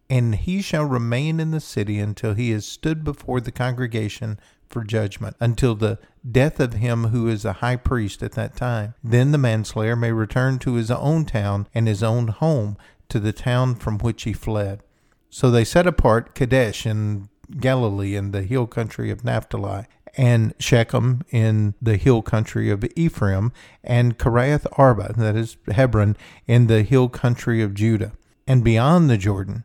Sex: male